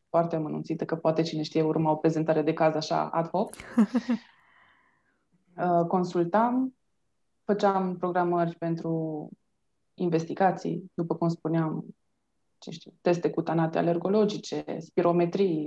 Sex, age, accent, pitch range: female, 20-39, native, 165-185 Hz